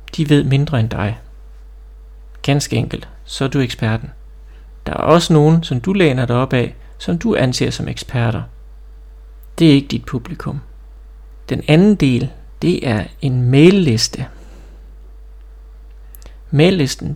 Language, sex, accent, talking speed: Danish, male, native, 135 wpm